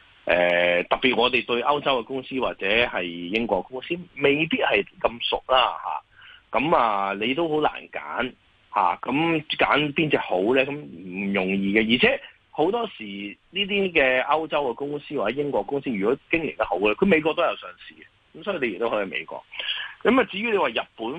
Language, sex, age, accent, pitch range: Chinese, male, 30-49, native, 90-135 Hz